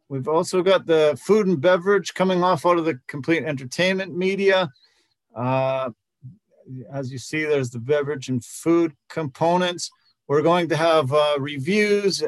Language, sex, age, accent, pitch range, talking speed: English, male, 40-59, American, 145-185 Hz, 150 wpm